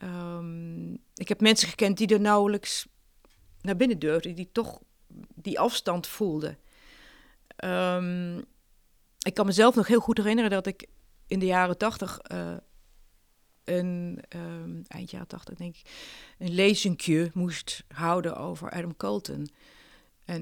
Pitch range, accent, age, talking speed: 170-225 Hz, Dutch, 40-59, 130 wpm